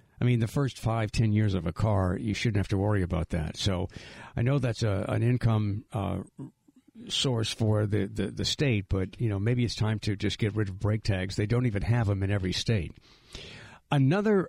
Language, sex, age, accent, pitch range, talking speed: English, male, 60-79, American, 105-125 Hz, 220 wpm